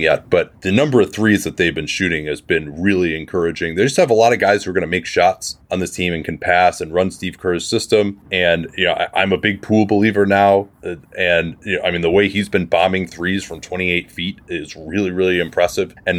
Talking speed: 245 wpm